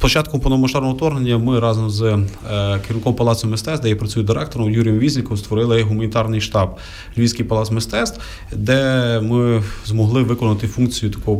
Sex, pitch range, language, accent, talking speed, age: male, 105-120 Hz, Ukrainian, native, 145 wpm, 30-49